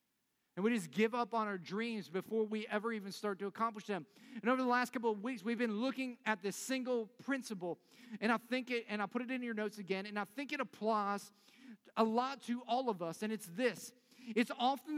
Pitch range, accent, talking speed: 215-255 Hz, American, 230 wpm